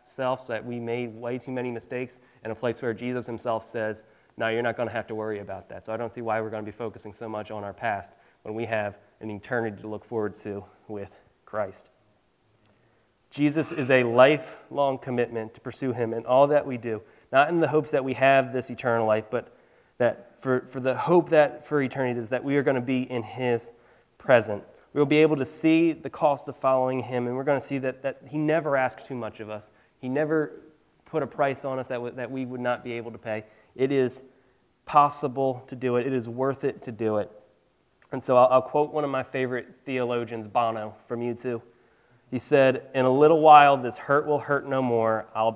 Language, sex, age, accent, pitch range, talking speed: English, male, 30-49, American, 115-135 Hz, 230 wpm